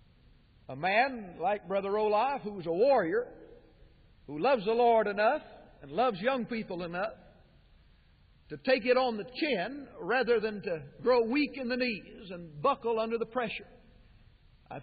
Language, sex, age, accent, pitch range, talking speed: English, male, 50-69, American, 195-235 Hz, 160 wpm